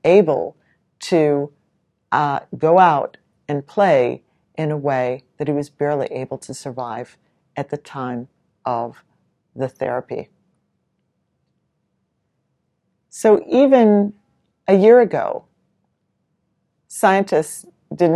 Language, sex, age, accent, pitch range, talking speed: English, female, 50-69, American, 140-170 Hz, 100 wpm